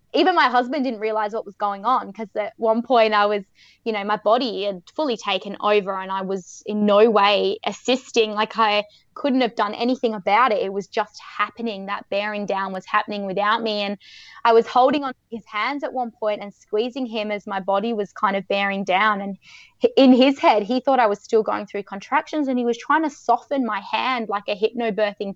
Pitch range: 205-260 Hz